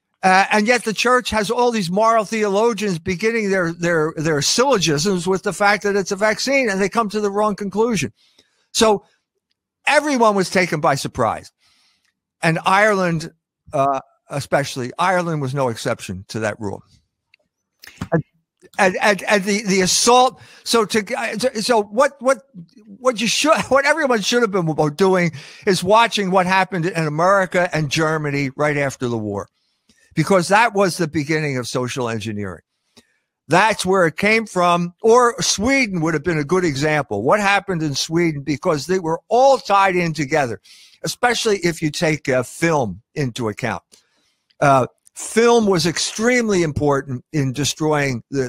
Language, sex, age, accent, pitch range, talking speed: English, male, 50-69, American, 150-215 Hz, 160 wpm